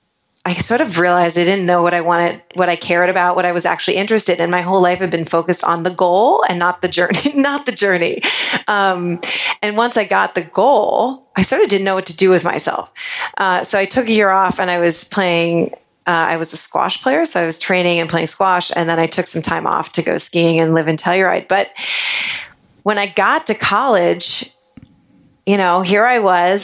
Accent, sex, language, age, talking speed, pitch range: American, female, English, 30-49, 230 wpm, 175-205 Hz